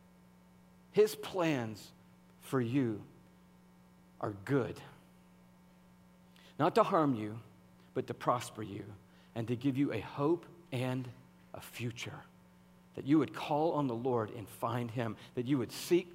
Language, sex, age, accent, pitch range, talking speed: English, male, 50-69, American, 115-150 Hz, 135 wpm